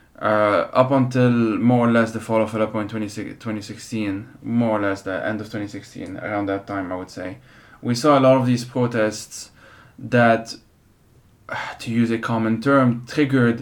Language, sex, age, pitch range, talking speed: English, male, 20-39, 110-125 Hz, 170 wpm